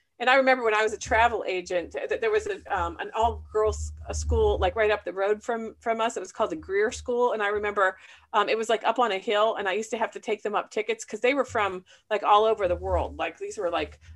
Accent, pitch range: American, 180-260 Hz